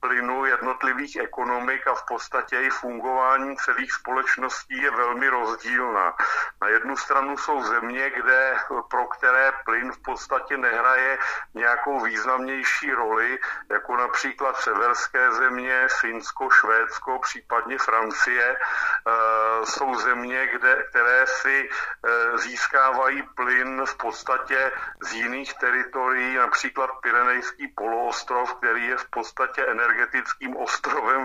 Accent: native